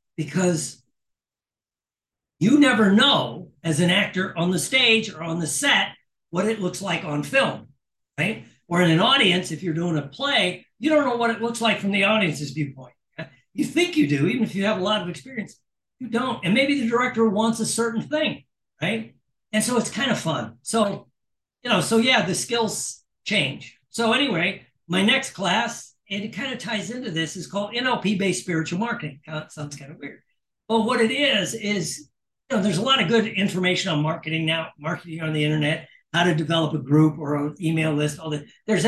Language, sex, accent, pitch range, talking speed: English, male, American, 160-225 Hz, 205 wpm